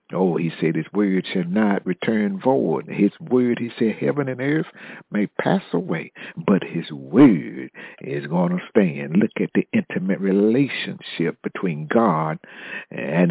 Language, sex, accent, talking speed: English, male, American, 155 wpm